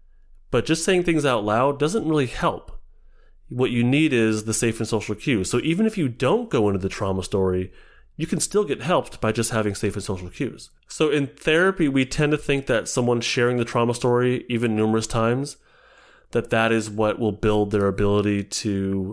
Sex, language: male, English